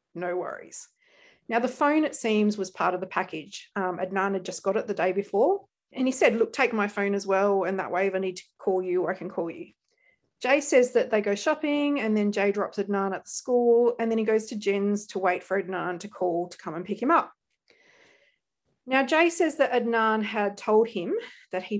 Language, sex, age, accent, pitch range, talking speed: English, female, 40-59, Australian, 195-275 Hz, 235 wpm